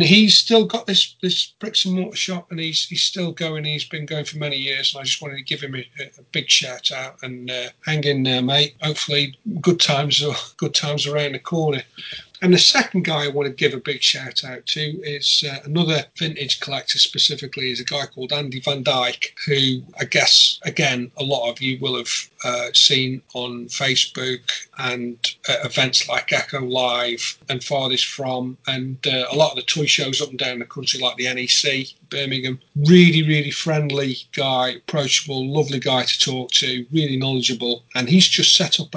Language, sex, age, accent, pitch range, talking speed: English, male, 40-59, British, 130-155 Hz, 200 wpm